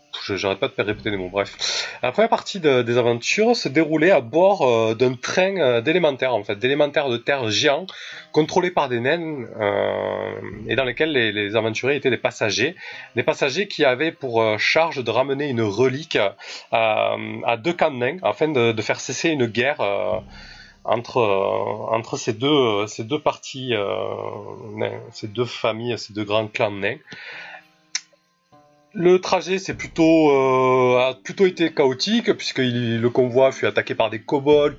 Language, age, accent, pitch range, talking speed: French, 30-49, French, 110-145 Hz, 180 wpm